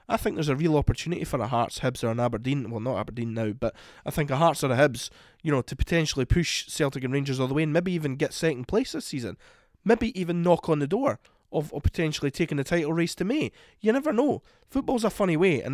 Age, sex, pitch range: 20-39, male, 120-165 Hz